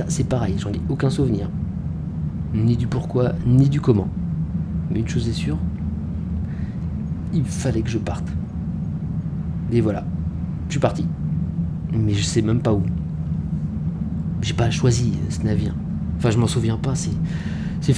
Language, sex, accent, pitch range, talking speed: French, male, French, 85-135 Hz, 150 wpm